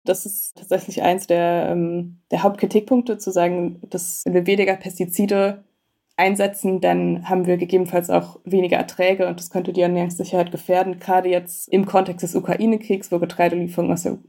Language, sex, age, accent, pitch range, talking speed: German, female, 20-39, German, 175-195 Hz, 160 wpm